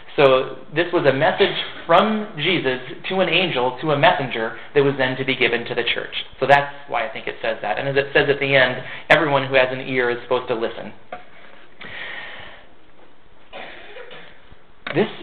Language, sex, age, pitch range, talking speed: English, male, 30-49, 125-155 Hz, 185 wpm